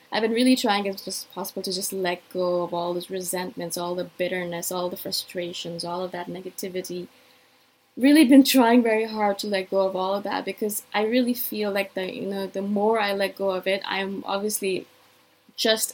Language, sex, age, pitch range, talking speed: English, female, 20-39, 185-225 Hz, 205 wpm